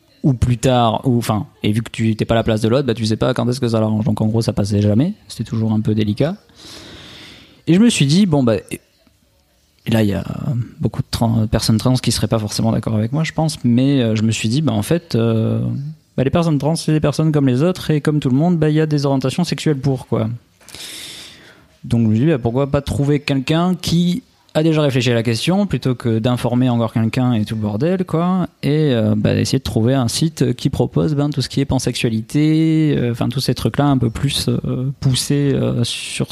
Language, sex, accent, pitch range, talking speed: French, male, French, 110-140 Hz, 255 wpm